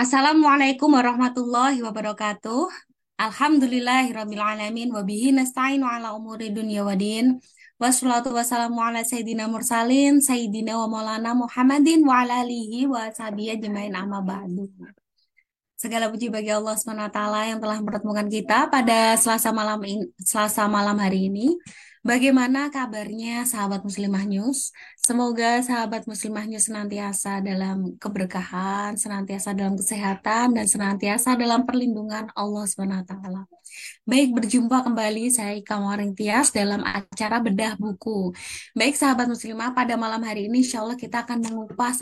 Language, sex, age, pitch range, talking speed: Indonesian, female, 20-39, 205-245 Hz, 125 wpm